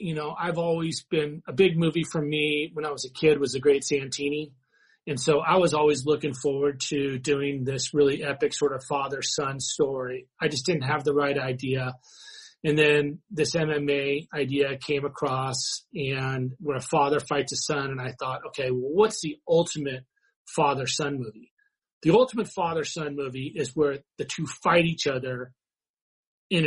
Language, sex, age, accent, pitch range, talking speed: English, male, 40-59, American, 140-160 Hz, 175 wpm